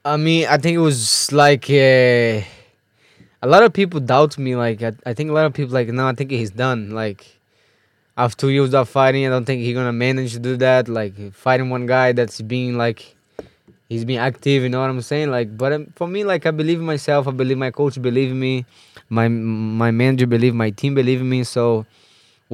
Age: 20-39